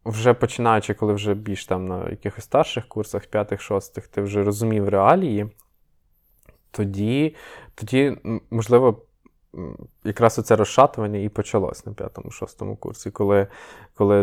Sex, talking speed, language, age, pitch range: male, 125 wpm, Ukrainian, 20-39, 100-115 Hz